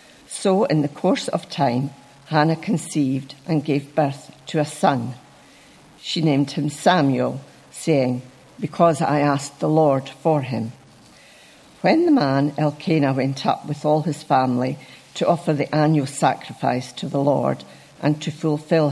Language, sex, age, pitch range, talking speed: English, female, 60-79, 135-160 Hz, 150 wpm